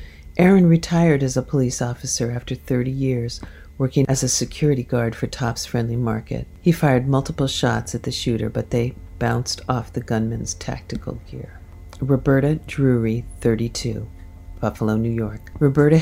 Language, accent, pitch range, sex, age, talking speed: English, American, 90-135 Hz, female, 50-69, 150 wpm